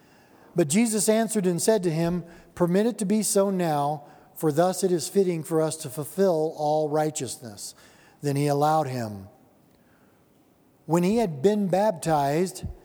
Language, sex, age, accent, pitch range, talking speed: English, male, 50-69, American, 155-195 Hz, 155 wpm